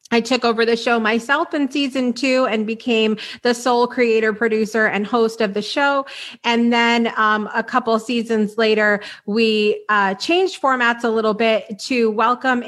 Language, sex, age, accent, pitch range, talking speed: English, female, 30-49, American, 215-255 Hz, 170 wpm